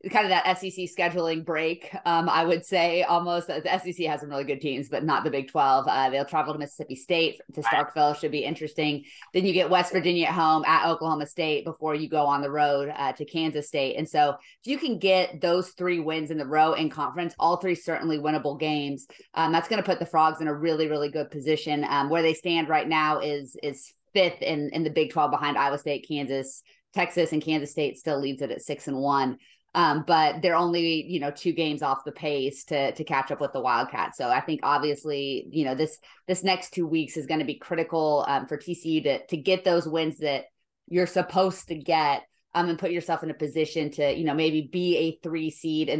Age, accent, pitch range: 20-39, American, 145-170 Hz